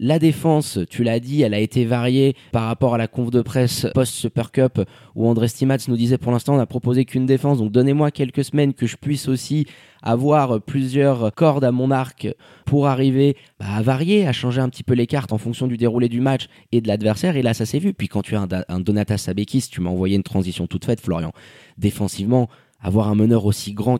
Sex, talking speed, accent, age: male, 230 wpm, French, 20-39